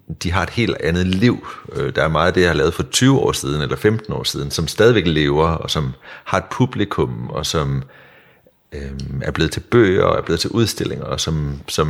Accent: native